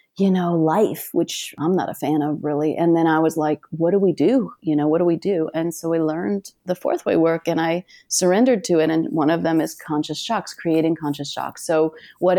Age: 30-49